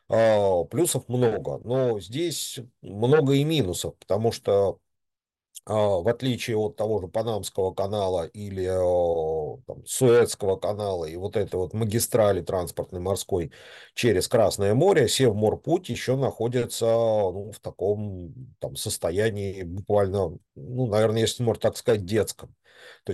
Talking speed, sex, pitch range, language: 120 wpm, male, 100-125 Hz, Russian